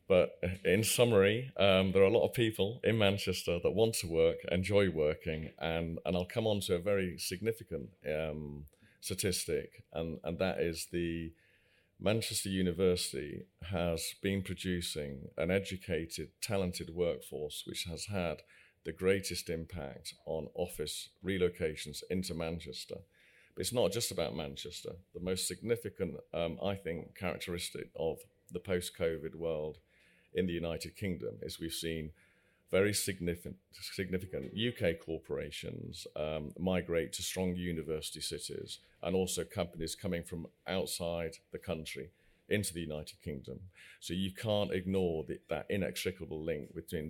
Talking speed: 140 wpm